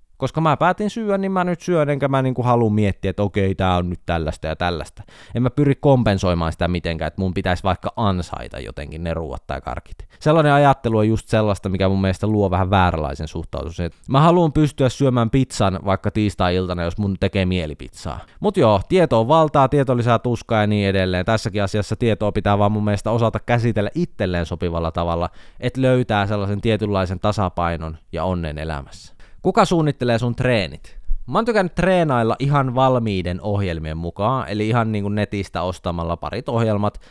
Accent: native